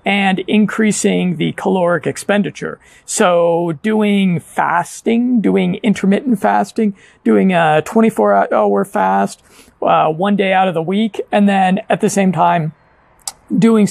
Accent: American